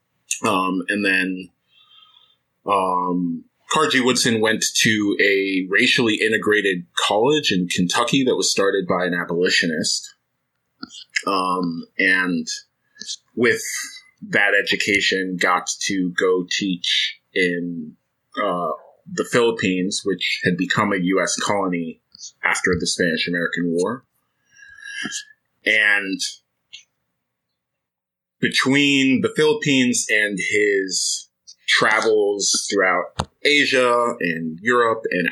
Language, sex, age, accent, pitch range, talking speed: English, male, 30-49, American, 90-135 Hz, 95 wpm